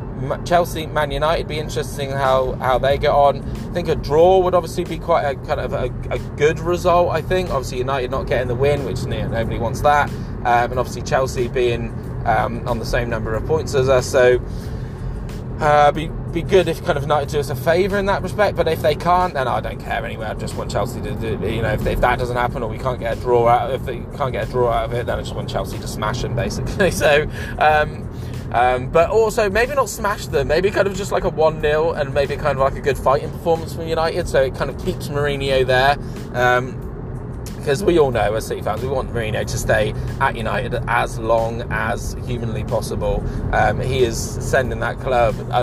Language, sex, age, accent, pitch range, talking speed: English, male, 20-39, British, 115-145 Hz, 230 wpm